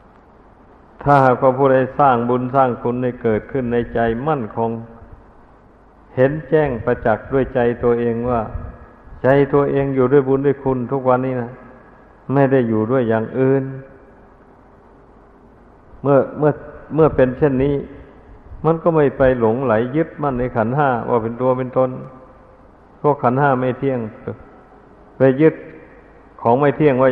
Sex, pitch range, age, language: male, 115-135 Hz, 60-79, Thai